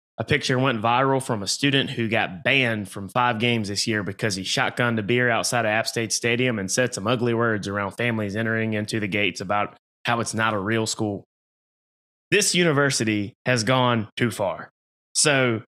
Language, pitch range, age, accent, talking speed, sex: English, 110-130 Hz, 20-39, American, 190 wpm, male